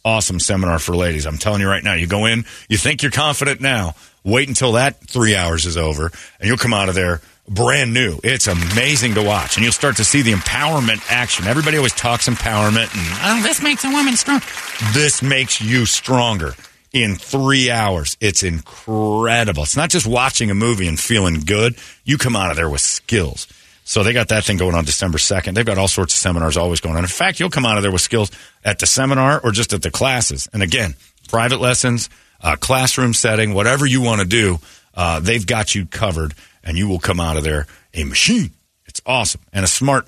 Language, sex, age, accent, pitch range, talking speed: English, male, 40-59, American, 90-120 Hz, 215 wpm